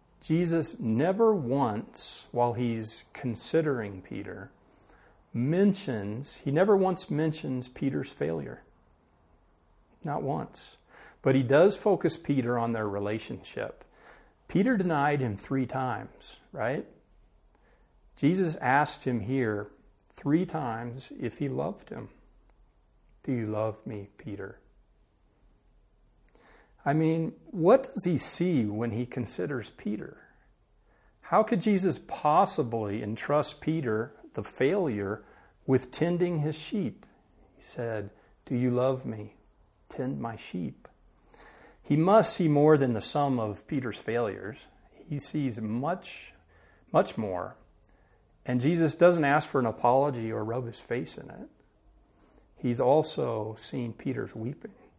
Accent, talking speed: American, 120 wpm